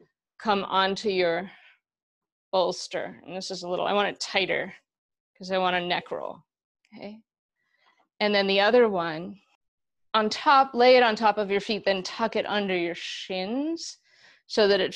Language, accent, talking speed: English, American, 175 wpm